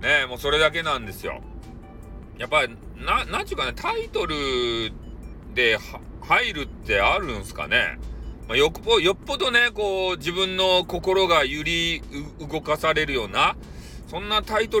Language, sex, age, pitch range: Japanese, male, 40-59, 120-190 Hz